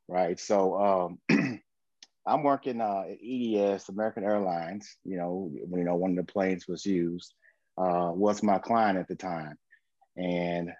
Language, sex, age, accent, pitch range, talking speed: English, male, 30-49, American, 95-110 Hz, 155 wpm